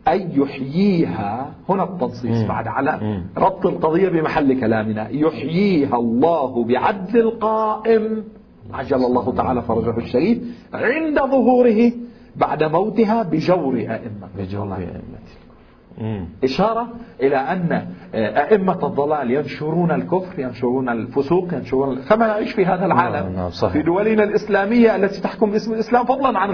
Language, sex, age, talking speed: Arabic, male, 50-69, 115 wpm